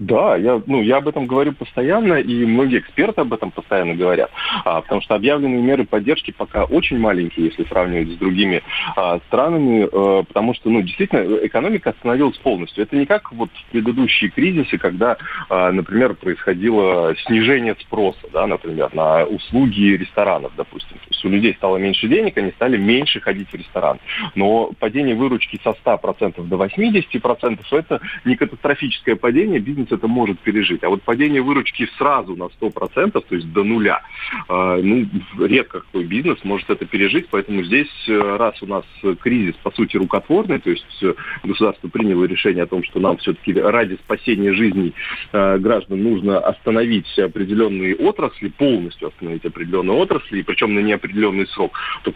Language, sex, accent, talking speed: Russian, male, native, 165 wpm